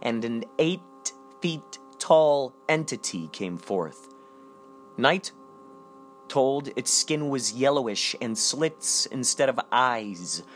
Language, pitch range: English, 115-135 Hz